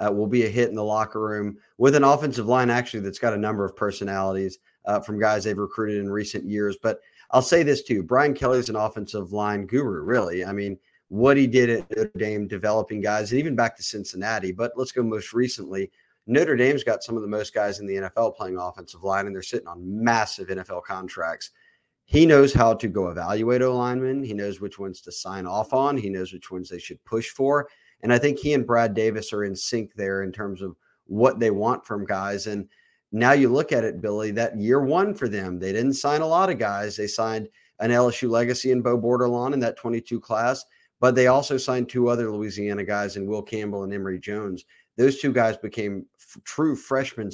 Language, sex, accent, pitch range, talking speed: English, male, American, 100-125 Hz, 225 wpm